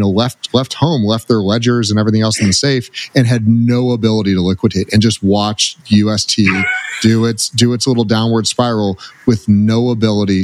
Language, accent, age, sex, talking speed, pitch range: English, American, 30-49, male, 190 wpm, 100-120 Hz